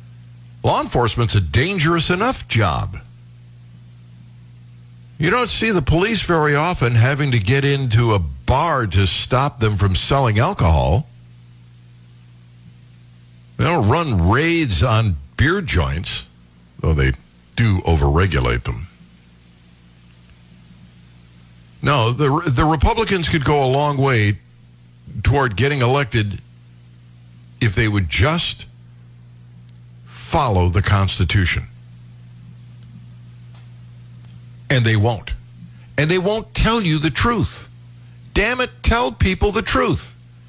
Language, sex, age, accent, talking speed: English, male, 60-79, American, 105 wpm